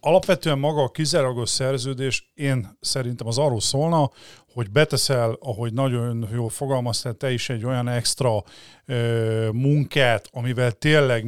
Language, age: Hungarian, 40-59